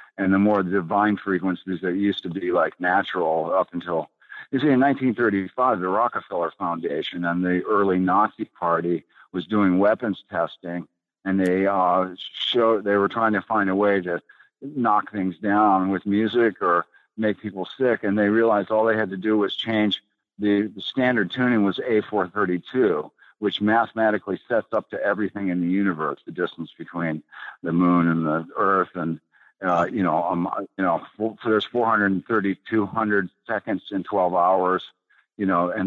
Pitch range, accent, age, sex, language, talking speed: 90-105 Hz, American, 50-69, male, English, 170 wpm